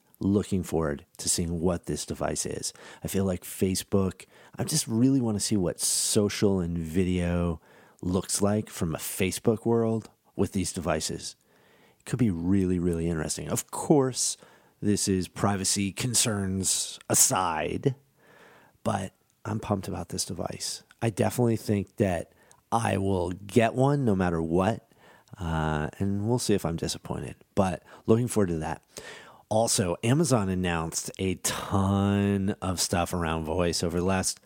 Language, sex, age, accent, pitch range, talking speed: English, male, 40-59, American, 90-110 Hz, 150 wpm